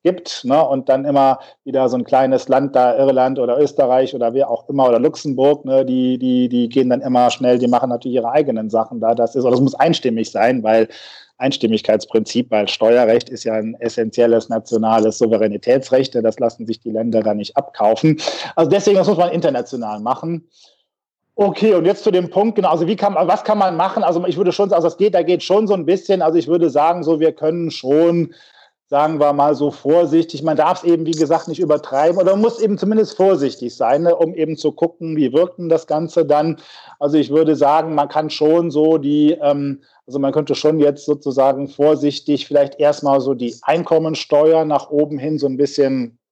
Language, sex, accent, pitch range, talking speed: German, male, German, 130-165 Hz, 210 wpm